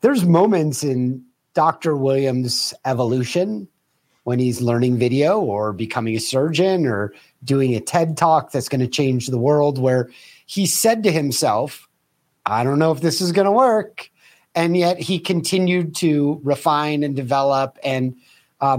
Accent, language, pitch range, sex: American, English, 135-170 Hz, male